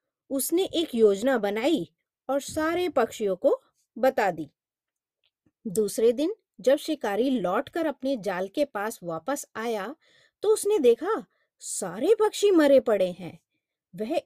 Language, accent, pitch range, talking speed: Hindi, native, 205-310 Hz, 125 wpm